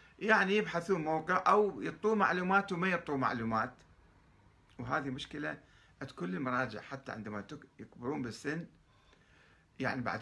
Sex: male